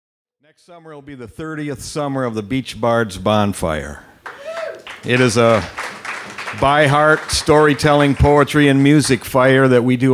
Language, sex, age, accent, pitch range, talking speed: English, male, 60-79, American, 105-130 Hz, 150 wpm